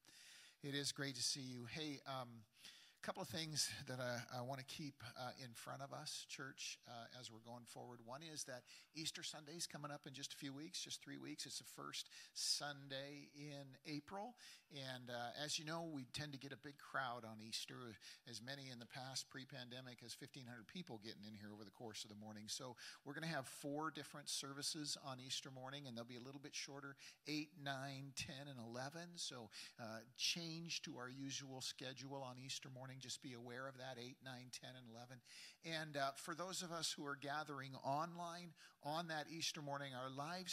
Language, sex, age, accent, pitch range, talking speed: English, male, 50-69, American, 120-145 Hz, 205 wpm